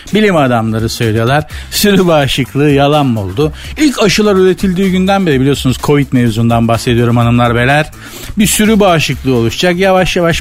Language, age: Turkish, 50-69